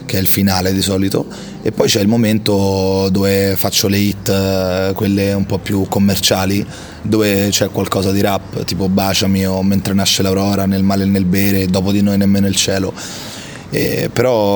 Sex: male